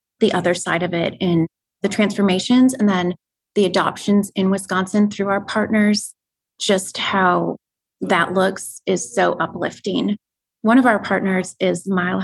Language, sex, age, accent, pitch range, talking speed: English, female, 30-49, American, 185-220 Hz, 145 wpm